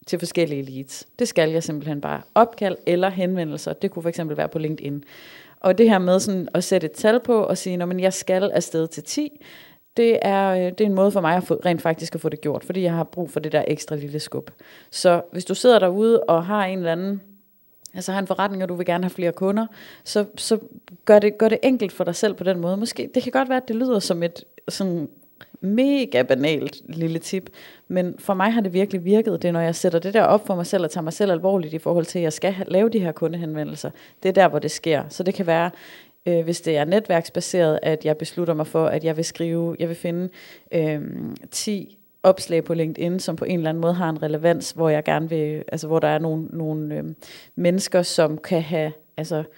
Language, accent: Danish, native